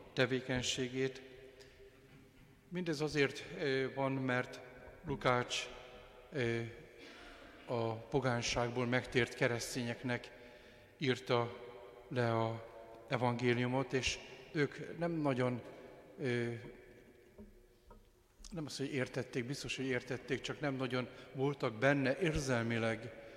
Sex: male